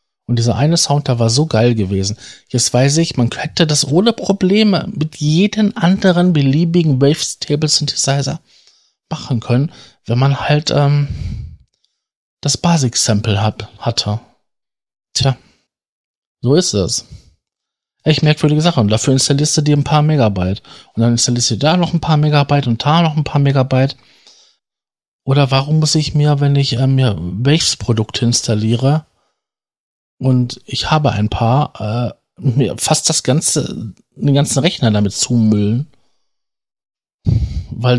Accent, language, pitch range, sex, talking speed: German, German, 120-150 Hz, male, 140 wpm